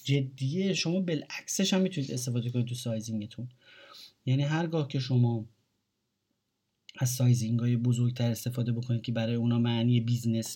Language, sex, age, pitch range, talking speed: Persian, male, 30-49, 115-140 Hz, 135 wpm